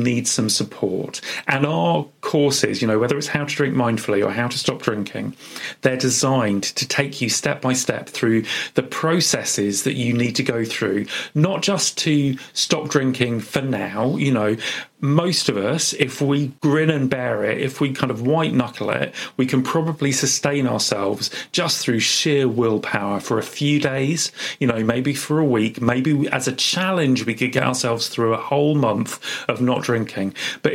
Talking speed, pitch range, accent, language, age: 185 wpm, 115-145 Hz, British, English, 40-59